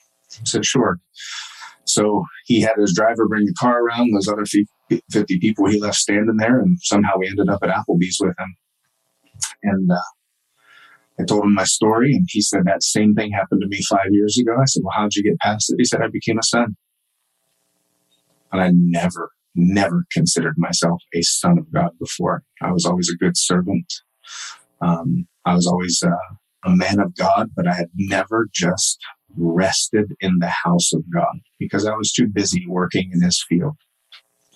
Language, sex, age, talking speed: English, male, 30-49, 190 wpm